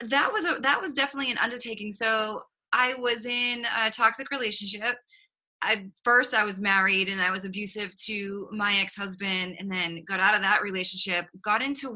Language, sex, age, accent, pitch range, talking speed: English, female, 20-39, American, 185-220 Hz, 180 wpm